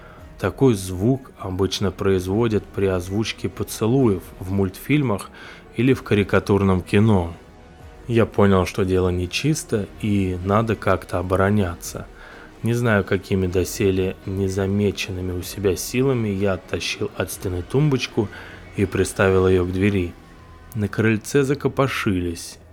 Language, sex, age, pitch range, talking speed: Russian, male, 20-39, 90-110 Hz, 115 wpm